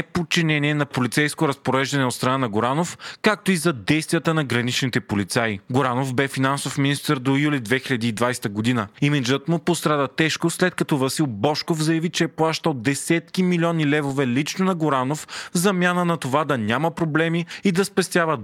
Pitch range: 130-170 Hz